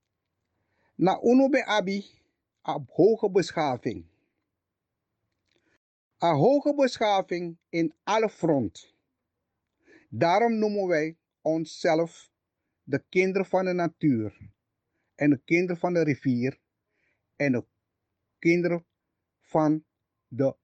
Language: Dutch